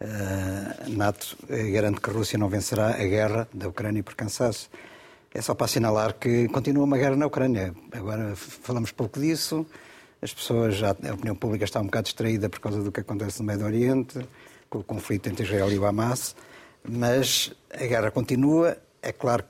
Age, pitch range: 60-79, 105-125 Hz